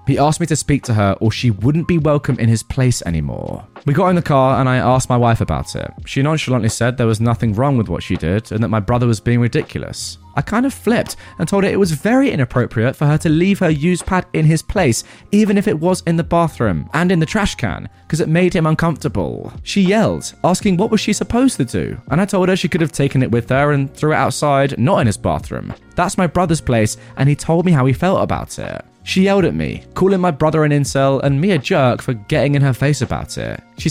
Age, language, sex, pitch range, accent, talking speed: 20-39, English, male, 115-170 Hz, British, 260 wpm